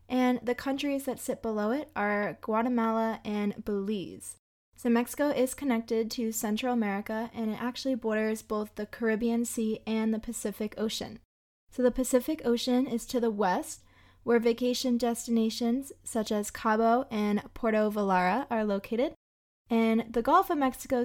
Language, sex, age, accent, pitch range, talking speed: English, female, 20-39, American, 215-250 Hz, 155 wpm